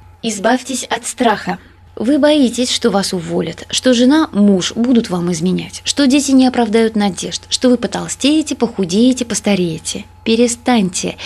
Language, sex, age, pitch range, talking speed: Russian, female, 20-39, 190-255 Hz, 135 wpm